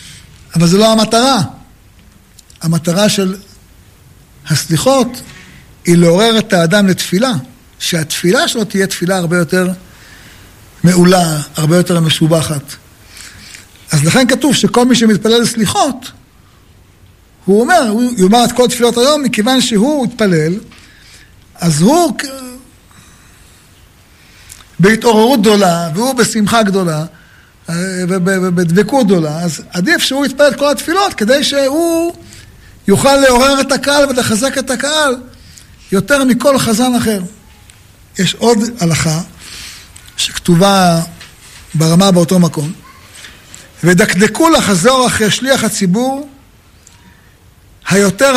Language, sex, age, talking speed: Hebrew, male, 60-79, 100 wpm